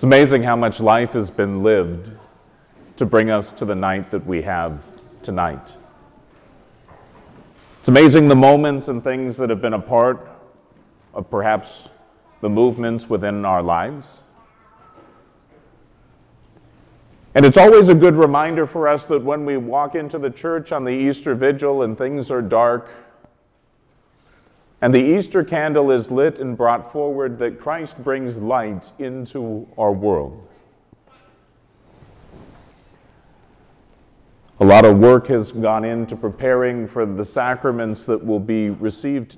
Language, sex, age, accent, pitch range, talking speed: English, male, 30-49, American, 105-135 Hz, 135 wpm